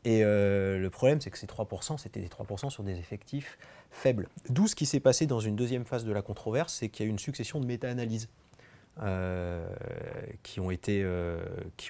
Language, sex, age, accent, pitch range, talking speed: French, male, 30-49, French, 100-130 Hz, 185 wpm